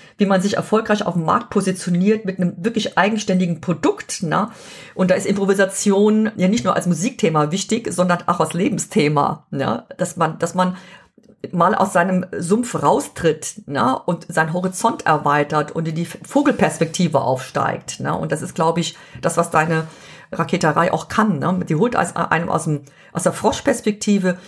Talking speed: 165 wpm